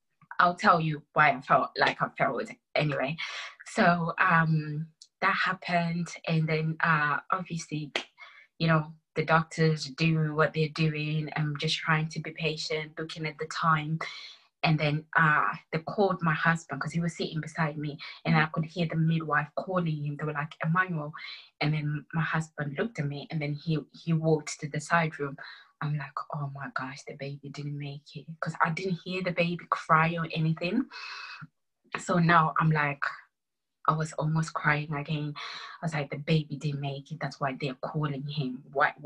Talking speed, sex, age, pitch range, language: 185 wpm, female, 20-39, 150-165 Hz, English